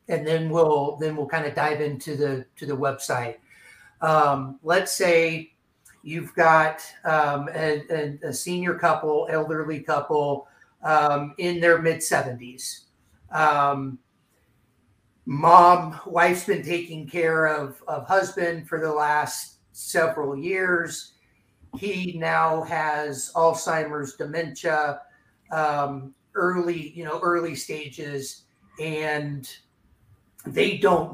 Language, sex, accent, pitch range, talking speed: English, male, American, 140-165 Hz, 115 wpm